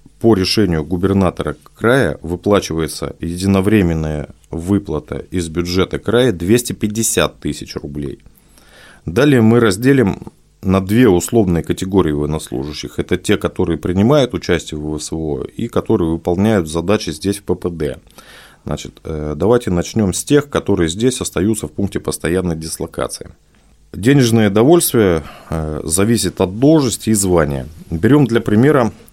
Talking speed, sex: 115 wpm, male